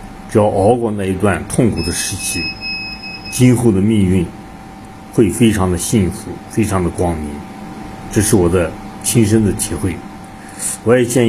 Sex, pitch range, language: male, 95-110 Hz, Chinese